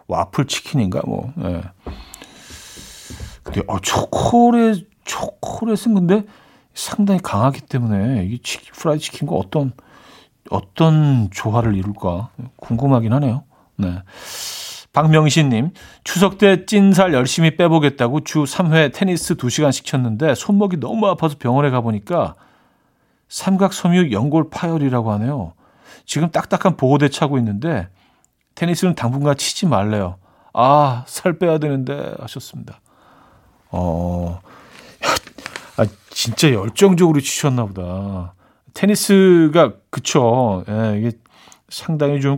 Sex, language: male, Korean